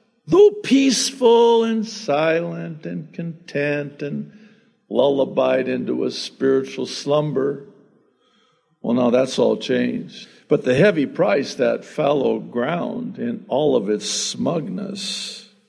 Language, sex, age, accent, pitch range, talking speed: English, male, 60-79, American, 145-230 Hz, 110 wpm